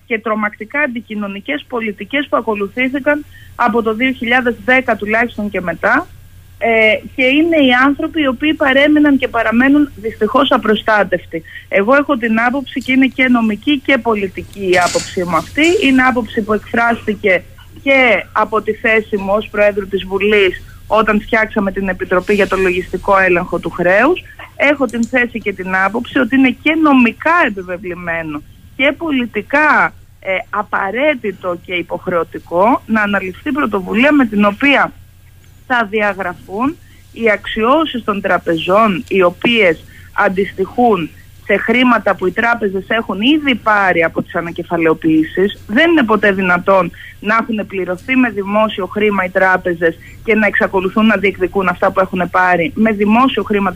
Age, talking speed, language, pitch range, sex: 30-49, 140 wpm, Greek, 190-255 Hz, female